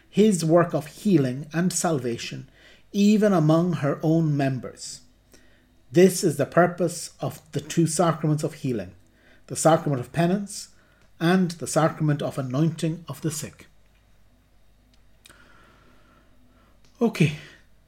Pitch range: 130-160 Hz